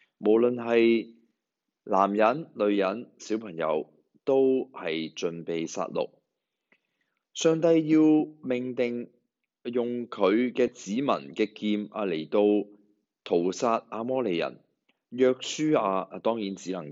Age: 20-39